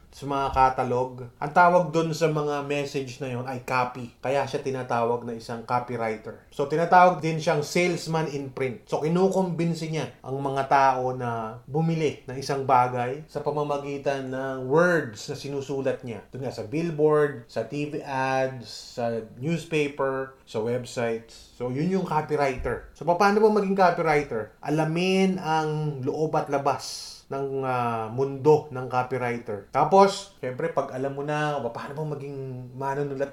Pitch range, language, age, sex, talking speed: 125-155 Hz, English, 20-39, male, 150 wpm